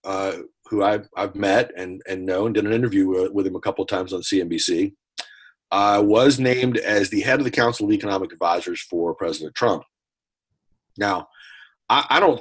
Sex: male